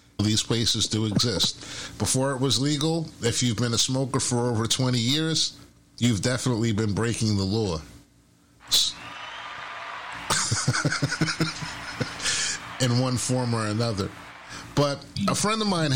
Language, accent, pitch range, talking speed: English, American, 110-140 Hz, 125 wpm